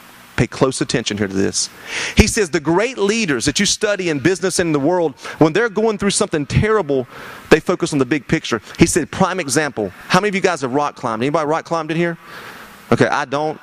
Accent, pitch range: American, 140-185 Hz